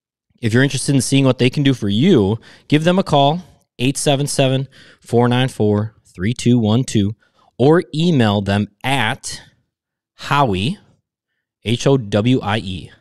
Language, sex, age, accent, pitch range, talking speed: English, male, 20-39, American, 100-120 Hz, 100 wpm